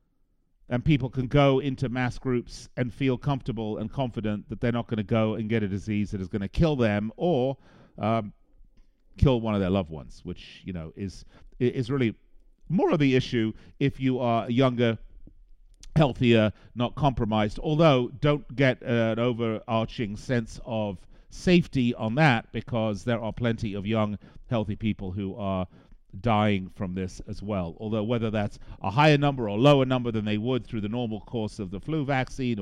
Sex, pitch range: male, 105-140 Hz